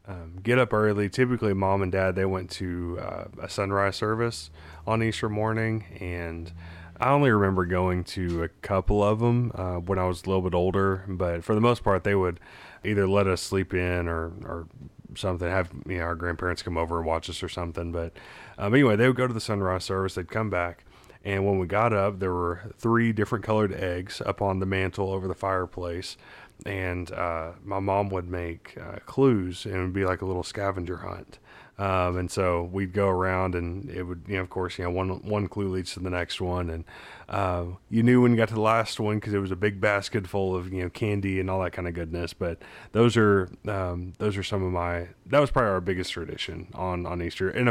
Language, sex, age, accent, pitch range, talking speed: English, male, 30-49, American, 90-105 Hz, 225 wpm